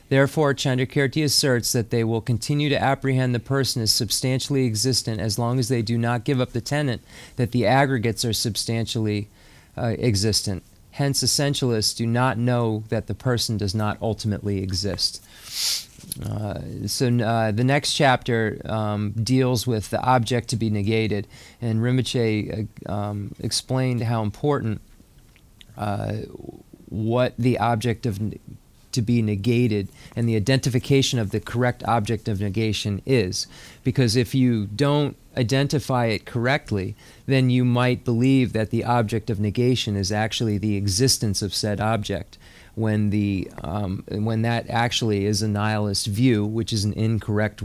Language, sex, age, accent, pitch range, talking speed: English, male, 30-49, American, 105-125 Hz, 145 wpm